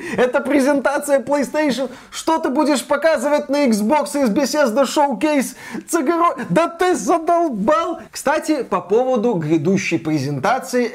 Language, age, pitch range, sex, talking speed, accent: Russian, 20-39, 170-270 Hz, male, 110 wpm, native